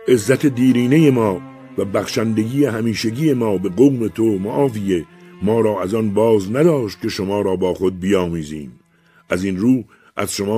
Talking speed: 160 wpm